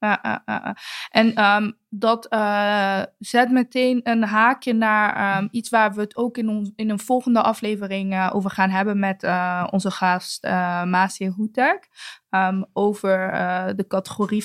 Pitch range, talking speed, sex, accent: 195-235 Hz, 170 wpm, female, Dutch